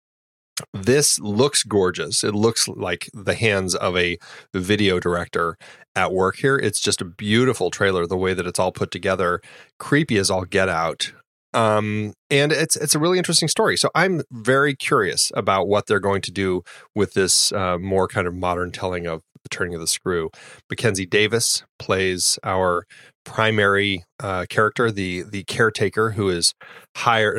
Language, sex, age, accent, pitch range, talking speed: English, male, 30-49, American, 95-115 Hz, 170 wpm